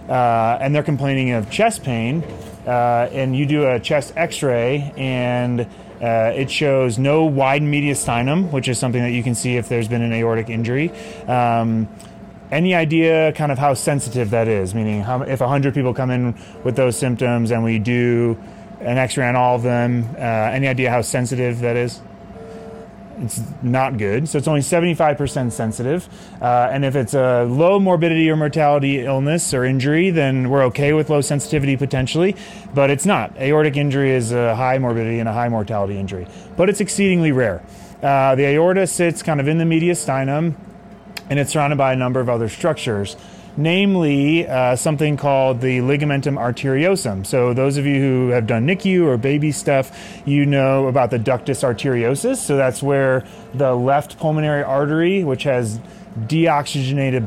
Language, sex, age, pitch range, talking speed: English, male, 30-49, 120-150 Hz, 175 wpm